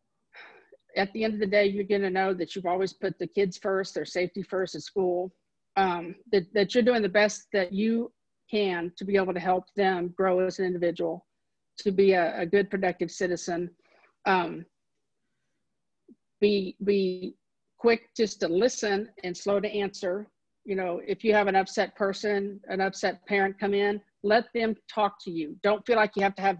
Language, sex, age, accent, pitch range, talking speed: English, female, 50-69, American, 185-205 Hz, 190 wpm